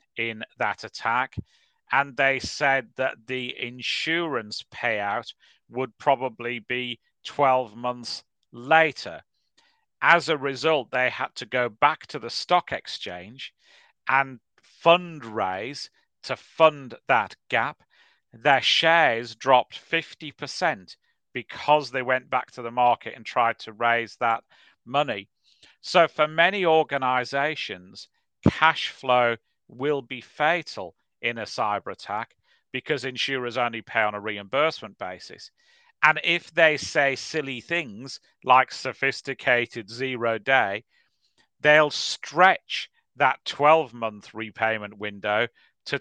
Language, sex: English, male